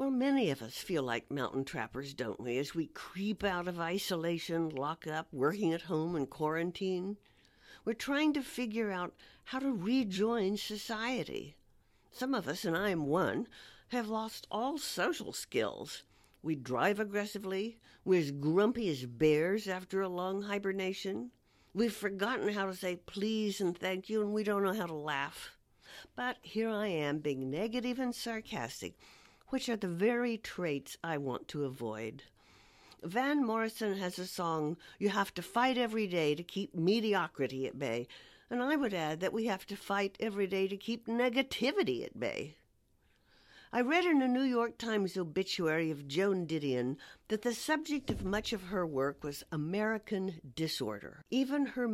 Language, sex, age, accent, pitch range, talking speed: English, female, 60-79, American, 160-225 Hz, 170 wpm